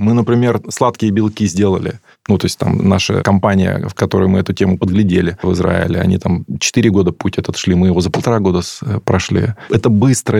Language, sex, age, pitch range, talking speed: Russian, male, 20-39, 95-125 Hz, 195 wpm